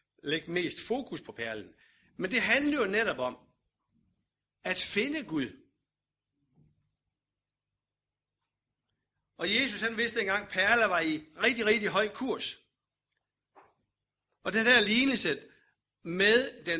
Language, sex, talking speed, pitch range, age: Danish, male, 125 wpm, 165-230 Hz, 60-79